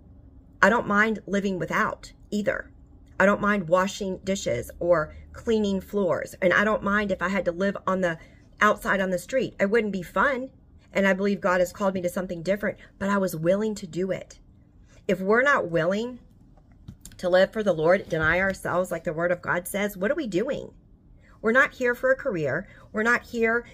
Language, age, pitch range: English, 40-59, 180-210 Hz